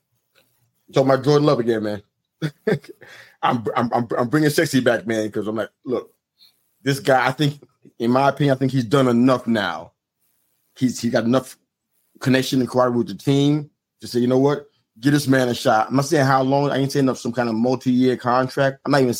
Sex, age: male, 30-49